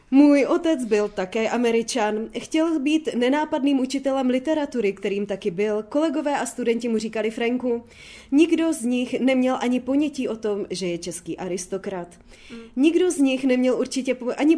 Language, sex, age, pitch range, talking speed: Czech, female, 20-39, 205-275 Hz, 150 wpm